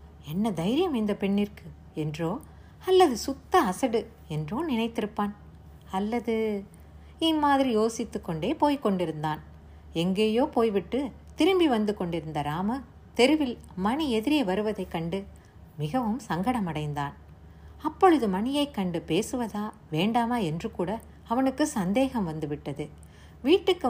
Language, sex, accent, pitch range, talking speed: Tamil, female, native, 180-260 Hz, 100 wpm